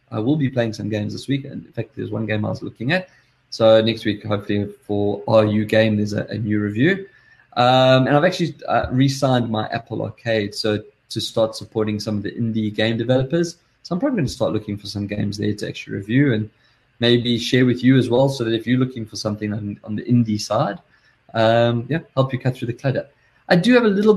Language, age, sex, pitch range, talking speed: English, 20-39, male, 110-140 Hz, 240 wpm